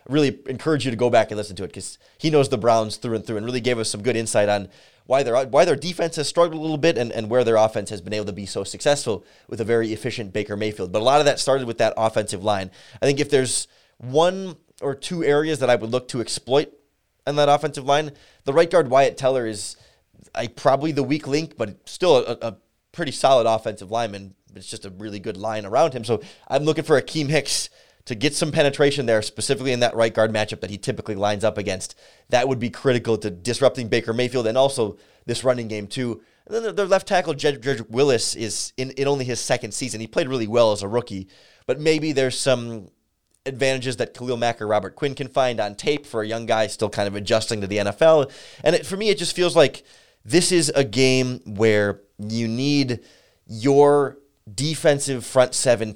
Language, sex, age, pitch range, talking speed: English, male, 20-39, 110-140 Hz, 230 wpm